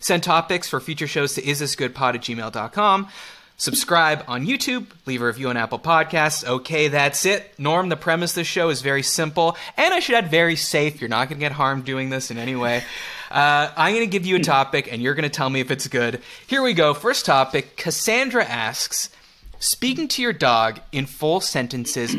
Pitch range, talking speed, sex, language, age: 130-190 Hz, 210 wpm, male, English, 30-49